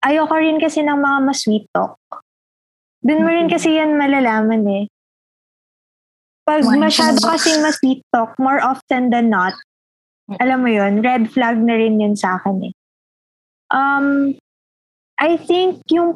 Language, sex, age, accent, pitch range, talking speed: Filipino, female, 20-39, native, 220-275 Hz, 150 wpm